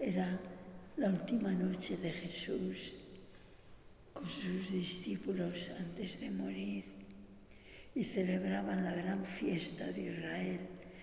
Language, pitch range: English, 170-200 Hz